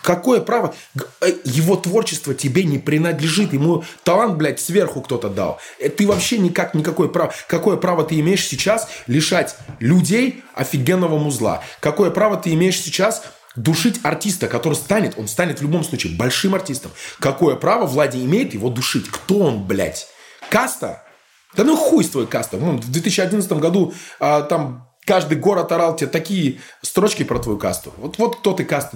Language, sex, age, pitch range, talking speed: Russian, male, 20-39, 150-205 Hz, 155 wpm